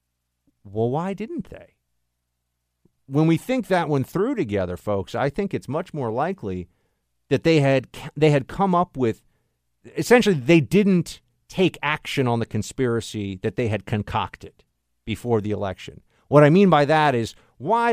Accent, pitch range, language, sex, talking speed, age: American, 95-150 Hz, English, male, 160 wpm, 50-69